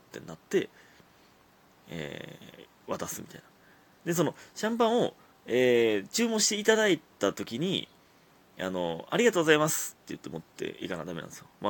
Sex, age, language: male, 30-49, Japanese